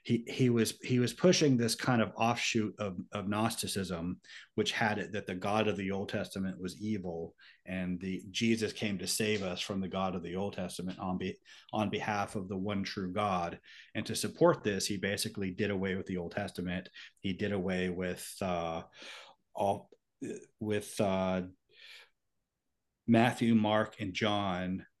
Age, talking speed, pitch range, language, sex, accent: 30-49, 175 wpm, 95-115 Hz, English, male, American